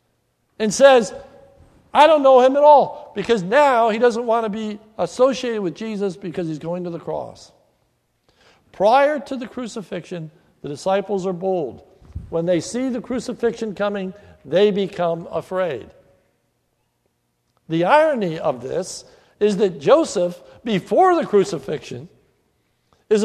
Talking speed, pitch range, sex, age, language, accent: 135 wpm, 180-255 Hz, male, 60-79, English, American